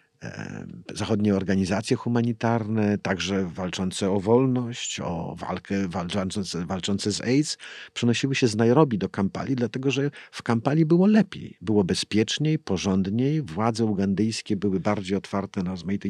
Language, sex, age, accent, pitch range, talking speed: Polish, male, 50-69, native, 95-115 Hz, 130 wpm